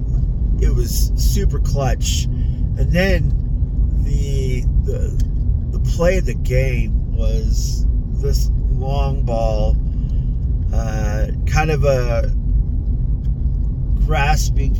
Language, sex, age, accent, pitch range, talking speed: English, male, 30-49, American, 65-85 Hz, 90 wpm